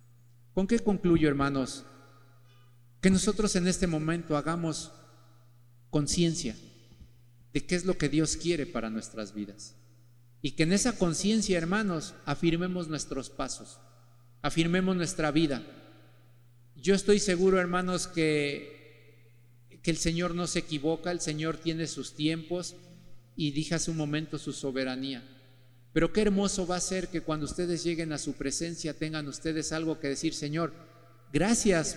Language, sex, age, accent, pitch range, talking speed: Spanish, male, 50-69, Mexican, 125-170 Hz, 140 wpm